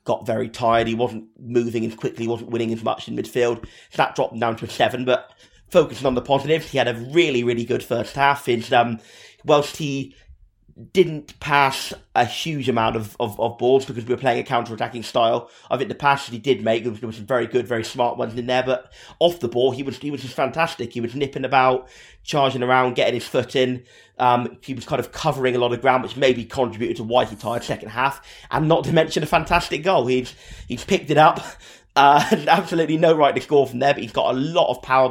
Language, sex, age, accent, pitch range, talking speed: English, male, 30-49, British, 120-140 Hz, 240 wpm